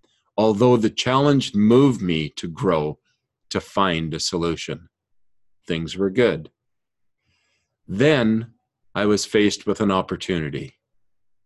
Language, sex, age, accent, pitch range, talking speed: English, male, 50-69, American, 95-115 Hz, 110 wpm